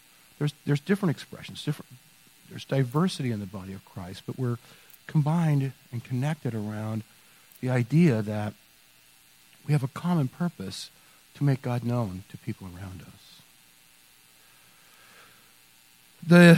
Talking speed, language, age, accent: 125 wpm, English, 50-69, American